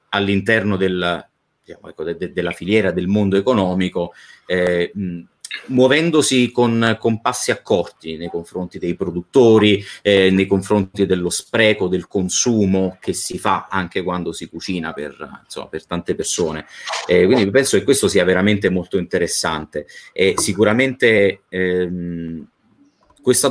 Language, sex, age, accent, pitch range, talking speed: Italian, male, 30-49, native, 85-105 Hz, 120 wpm